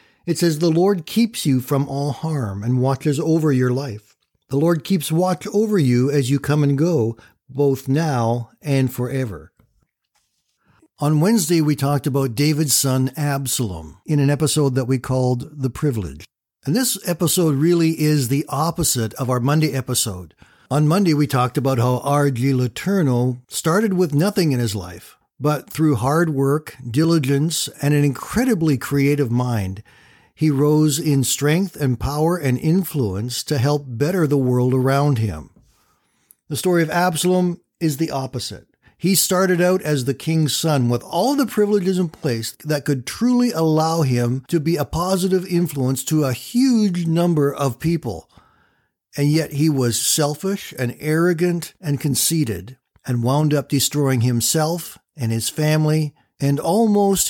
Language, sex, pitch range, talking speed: English, male, 130-165 Hz, 155 wpm